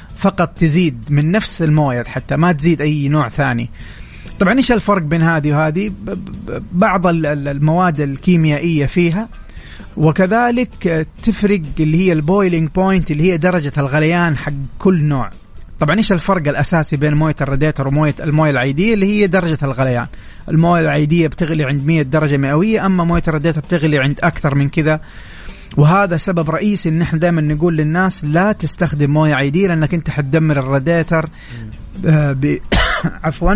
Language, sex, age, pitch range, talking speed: Arabic, male, 30-49, 145-180 Hz, 145 wpm